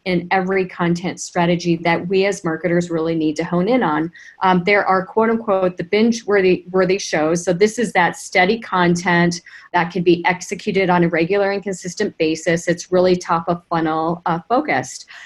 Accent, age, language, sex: American, 40-59, English, female